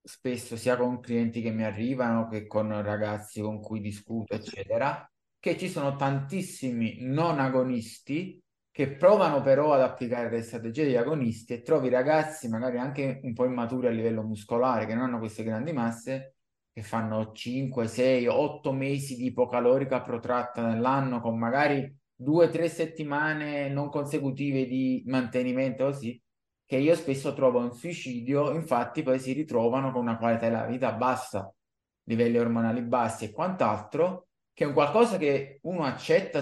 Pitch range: 115-140 Hz